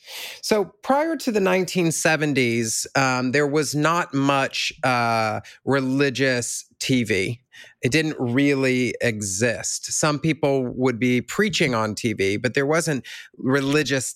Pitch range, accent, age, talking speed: 120-145 Hz, American, 40-59, 115 wpm